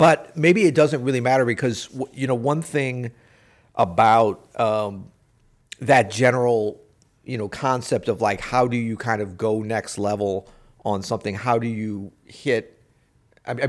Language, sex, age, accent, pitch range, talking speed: English, male, 50-69, American, 105-125 Hz, 155 wpm